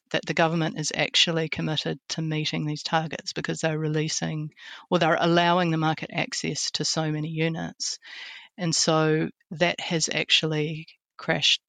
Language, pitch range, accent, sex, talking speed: English, 155-165 Hz, Australian, female, 150 wpm